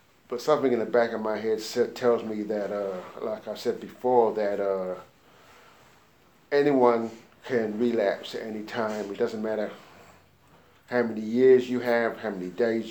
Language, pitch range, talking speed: English, 105-120 Hz, 165 wpm